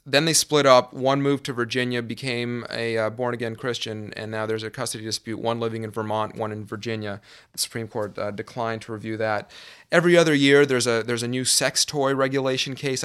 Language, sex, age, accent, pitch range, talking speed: English, male, 30-49, American, 110-130 Hz, 210 wpm